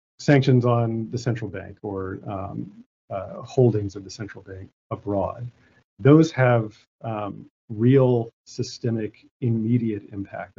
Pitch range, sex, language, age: 105-125 Hz, male, English, 40-59